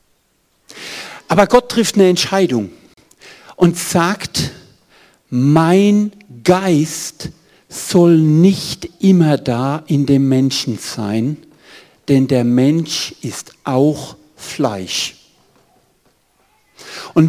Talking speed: 85 wpm